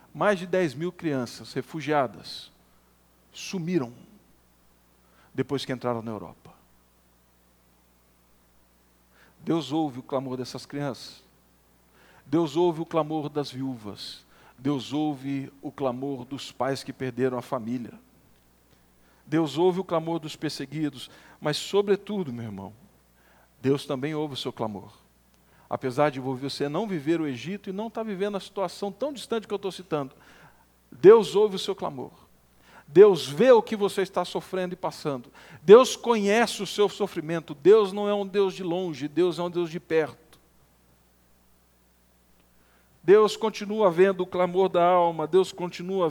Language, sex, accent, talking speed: Portuguese, male, Brazilian, 145 wpm